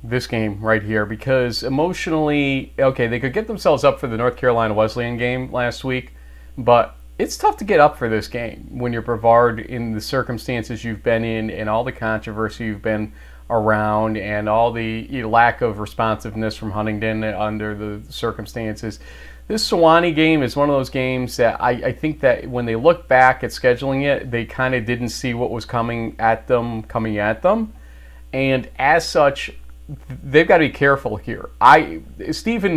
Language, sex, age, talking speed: English, male, 30-49, 185 wpm